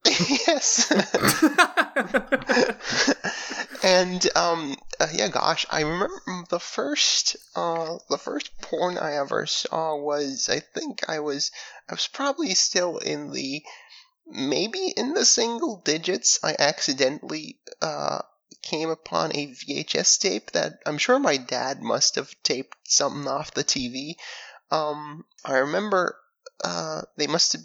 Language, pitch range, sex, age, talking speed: English, 150-250 Hz, male, 20-39, 125 wpm